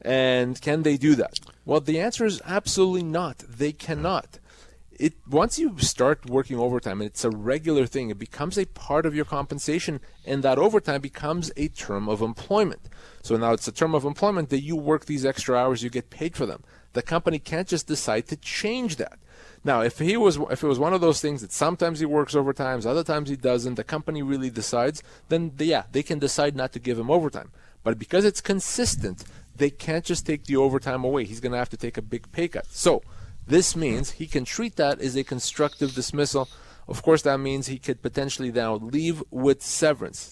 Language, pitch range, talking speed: English, 125-155 Hz, 215 wpm